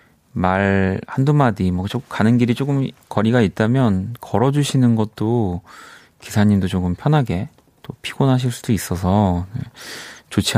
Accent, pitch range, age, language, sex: native, 90-125 Hz, 30-49, Korean, male